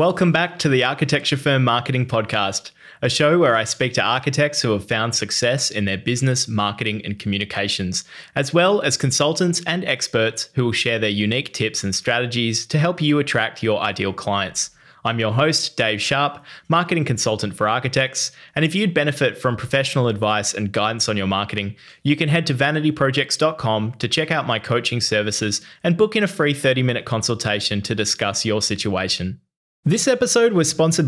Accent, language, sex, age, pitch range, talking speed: Australian, English, male, 20-39, 110-150 Hz, 180 wpm